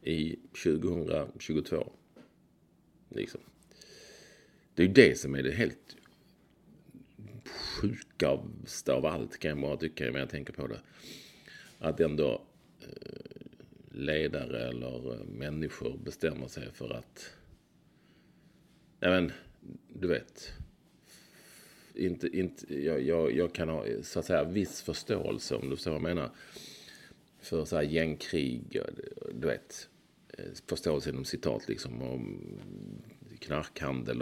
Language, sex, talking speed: English, male, 120 wpm